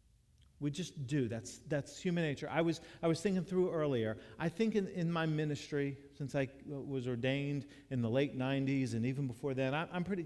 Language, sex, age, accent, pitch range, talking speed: English, male, 50-69, American, 115-160 Hz, 200 wpm